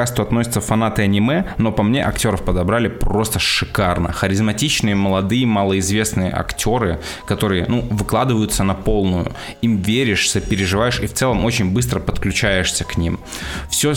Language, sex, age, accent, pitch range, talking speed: Russian, male, 20-39, native, 95-115 Hz, 135 wpm